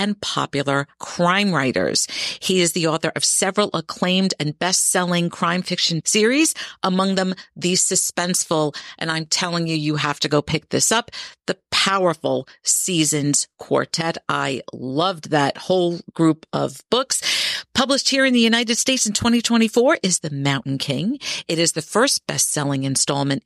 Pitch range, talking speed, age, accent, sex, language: 155-195 Hz, 155 wpm, 50-69, American, female, English